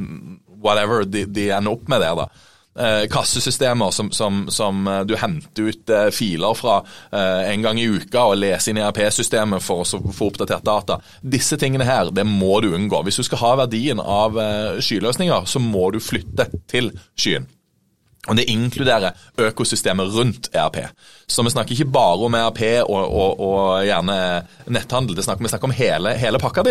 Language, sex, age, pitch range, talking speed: English, male, 30-49, 100-125 Hz, 175 wpm